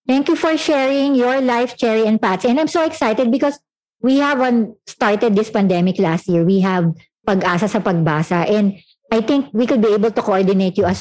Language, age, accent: English, 50-69, Filipino